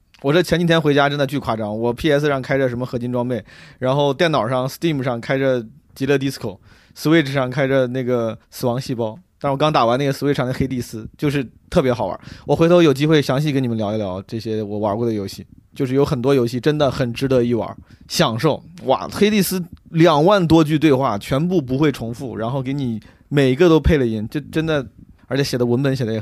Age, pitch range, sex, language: 20-39, 115-155 Hz, male, Chinese